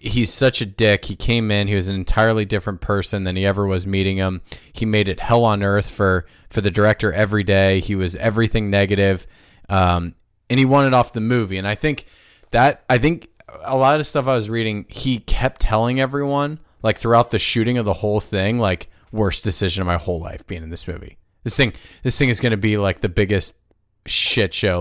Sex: male